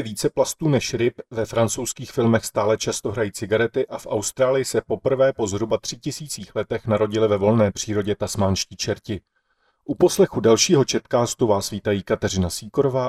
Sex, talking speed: male, 155 wpm